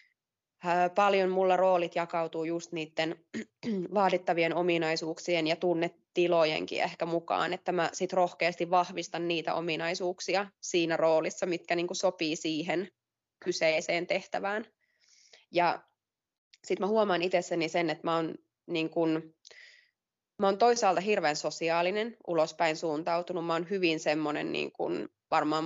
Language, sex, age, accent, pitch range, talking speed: Finnish, female, 20-39, native, 160-185 Hz, 110 wpm